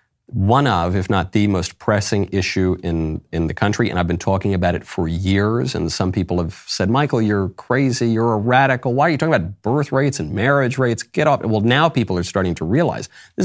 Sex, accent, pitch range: male, American, 90-135 Hz